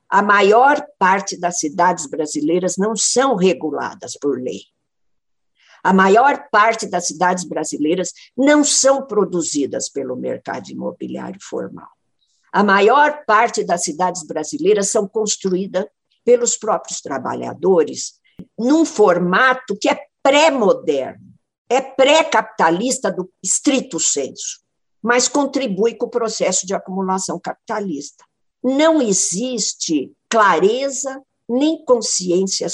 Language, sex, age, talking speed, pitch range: Portuguese, female, 60-79, 105 wpm, 180-265 Hz